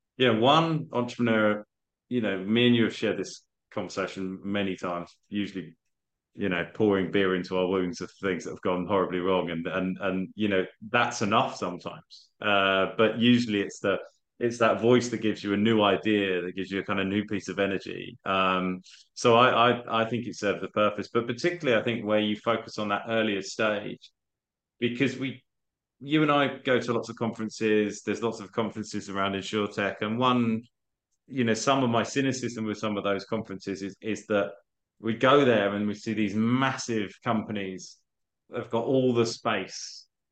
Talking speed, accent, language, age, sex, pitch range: 190 wpm, British, English, 20-39, male, 100-120 Hz